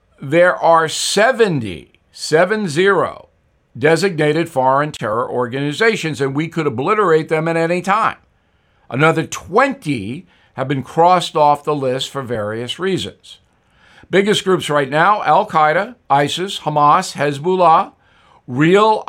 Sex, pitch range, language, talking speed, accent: male, 140-180 Hz, English, 115 wpm, American